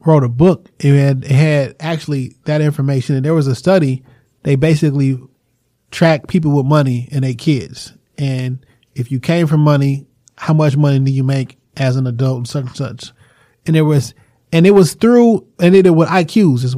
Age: 20-39